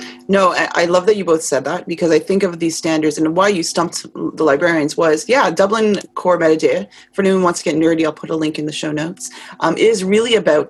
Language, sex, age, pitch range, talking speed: English, female, 30-49, 155-180 Hz, 240 wpm